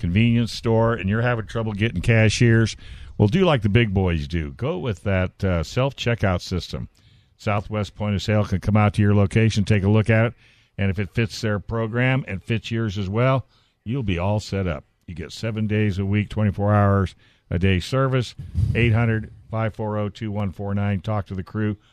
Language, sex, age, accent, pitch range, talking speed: English, male, 60-79, American, 100-115 Hz, 185 wpm